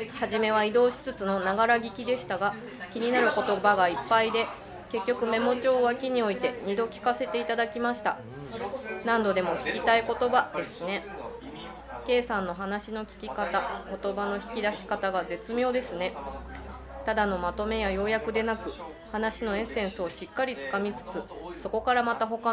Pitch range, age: 200-235 Hz, 20-39